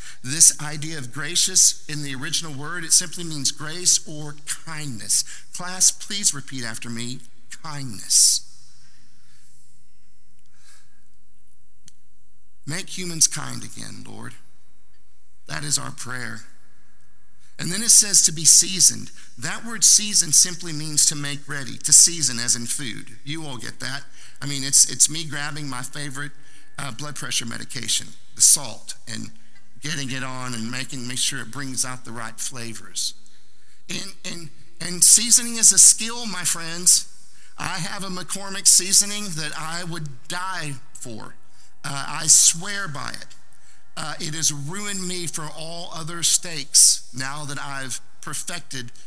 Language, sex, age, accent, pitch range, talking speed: English, male, 50-69, American, 120-165 Hz, 145 wpm